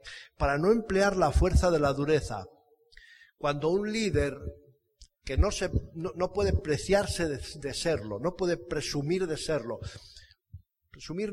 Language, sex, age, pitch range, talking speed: Spanish, male, 60-79, 135-185 Hz, 140 wpm